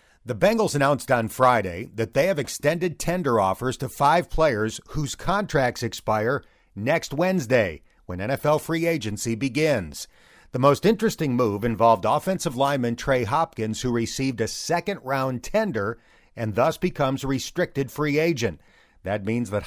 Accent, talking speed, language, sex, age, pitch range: American, 145 wpm, English, male, 50-69, 110-145 Hz